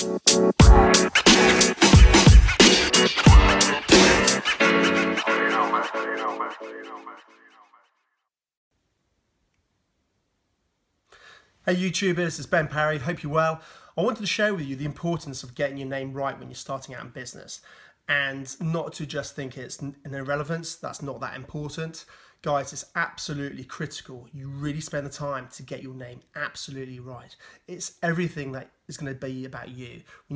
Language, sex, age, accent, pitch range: English, male, 30-49, British, 135-175 Hz